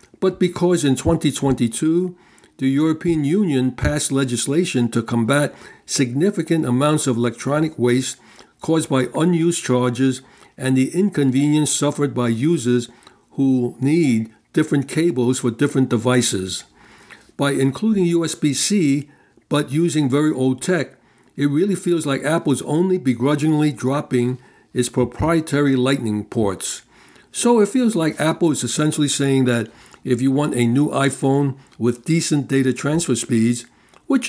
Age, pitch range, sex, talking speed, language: 60-79, 125-155 Hz, male, 130 wpm, English